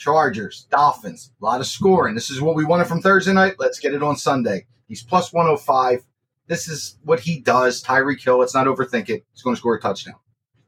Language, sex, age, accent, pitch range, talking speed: English, male, 30-49, American, 120-165 Hz, 220 wpm